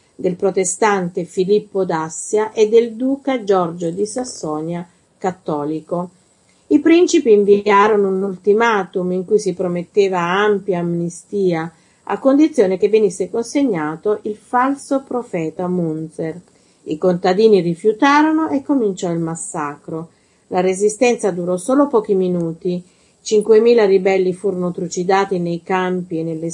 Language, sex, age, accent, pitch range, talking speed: Italian, female, 40-59, native, 175-215 Hz, 120 wpm